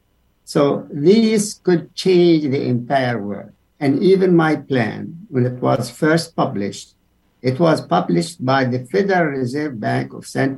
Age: 60-79